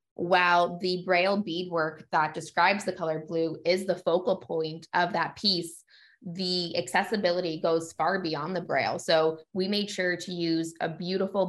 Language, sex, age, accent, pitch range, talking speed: English, female, 20-39, American, 165-185 Hz, 160 wpm